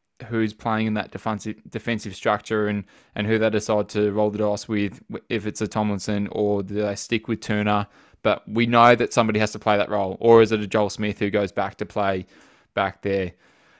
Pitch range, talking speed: 105-120 Hz, 220 wpm